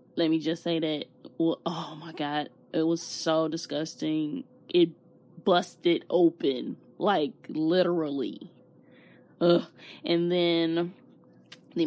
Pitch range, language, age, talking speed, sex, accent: 160-185 Hz, English, 20-39, 110 wpm, female, American